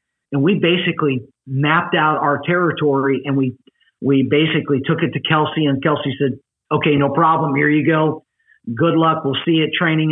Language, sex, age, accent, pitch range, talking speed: English, male, 50-69, American, 145-180 Hz, 185 wpm